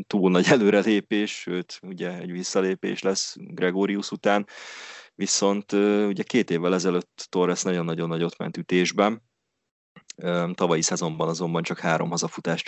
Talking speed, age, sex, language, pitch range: 125 wpm, 20-39, male, Hungarian, 85-100 Hz